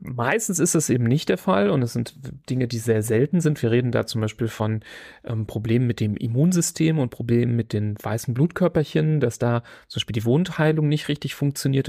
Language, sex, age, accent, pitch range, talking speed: German, male, 30-49, German, 115-145 Hz, 205 wpm